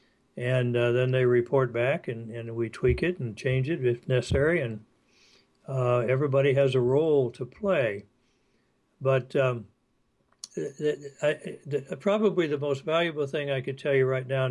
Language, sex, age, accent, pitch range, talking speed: English, male, 60-79, American, 120-145 Hz, 170 wpm